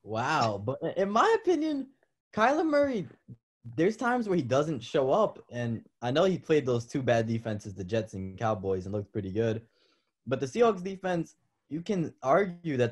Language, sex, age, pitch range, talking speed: English, male, 20-39, 100-125 Hz, 180 wpm